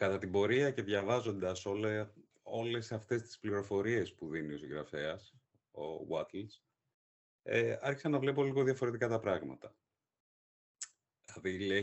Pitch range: 95-130 Hz